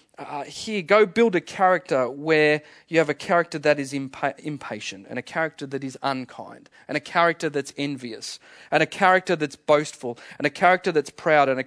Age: 30-49